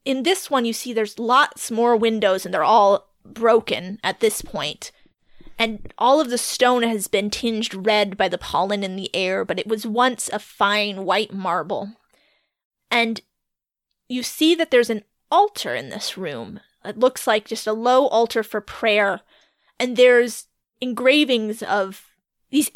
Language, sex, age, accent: English, female, 30-49, American